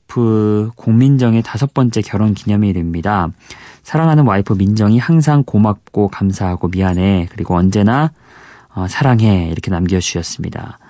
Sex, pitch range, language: male, 95-125 Hz, Korean